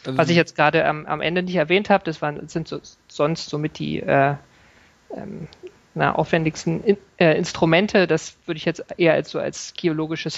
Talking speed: 190 wpm